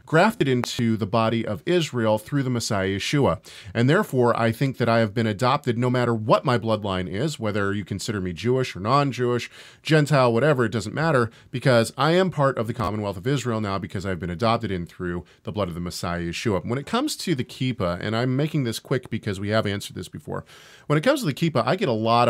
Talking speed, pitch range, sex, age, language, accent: 230 wpm, 110-140 Hz, male, 40-59, English, American